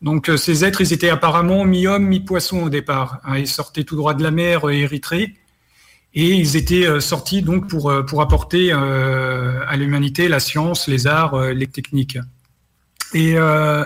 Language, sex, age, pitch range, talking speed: French, male, 40-59, 135-175 Hz, 160 wpm